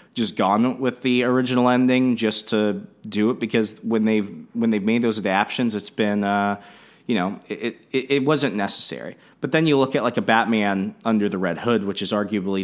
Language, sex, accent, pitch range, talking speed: English, male, American, 95-115 Hz, 205 wpm